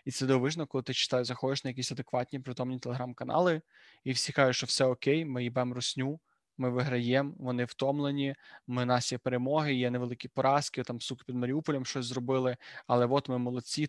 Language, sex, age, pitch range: Ukrainian, male, 20-39, 125-140 Hz